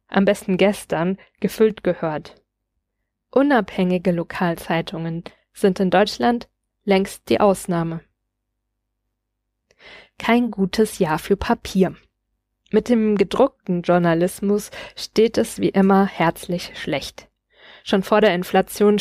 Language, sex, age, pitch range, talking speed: German, female, 20-39, 175-210 Hz, 100 wpm